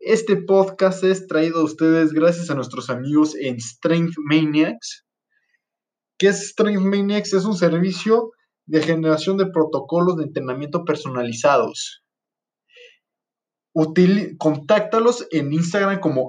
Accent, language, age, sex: Mexican, Spanish, 20-39, male